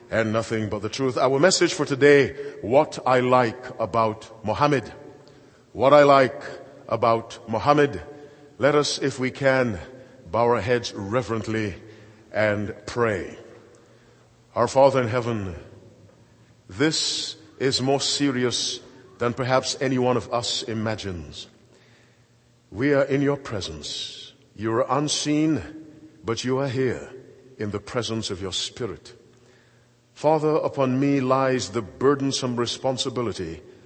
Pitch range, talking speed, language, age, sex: 115-140 Hz, 125 wpm, English, 50-69, male